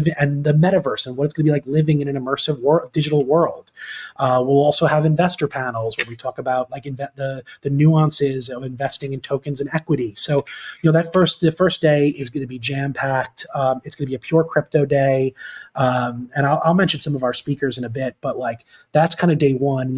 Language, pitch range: English, 130-150 Hz